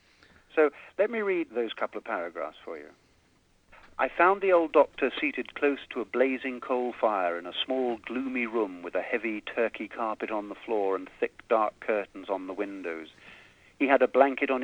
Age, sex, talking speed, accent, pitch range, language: 50-69, male, 195 wpm, British, 105-145 Hz, English